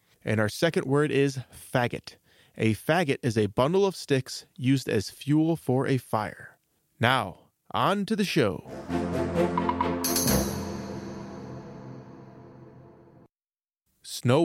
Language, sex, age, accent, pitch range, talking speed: English, male, 20-39, American, 100-140 Hz, 105 wpm